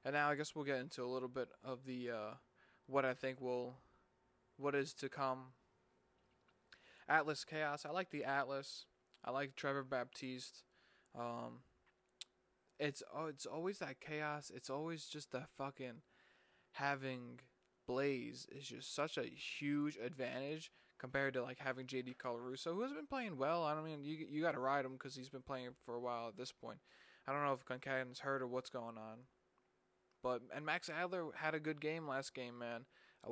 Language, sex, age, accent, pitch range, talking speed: English, male, 20-39, American, 125-140 Hz, 185 wpm